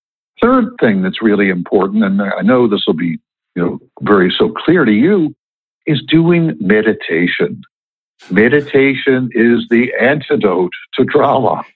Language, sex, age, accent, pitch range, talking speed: English, male, 60-79, American, 105-155 Hz, 140 wpm